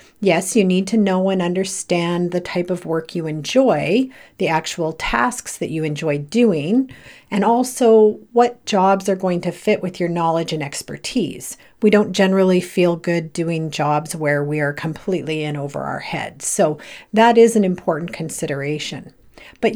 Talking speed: 165 wpm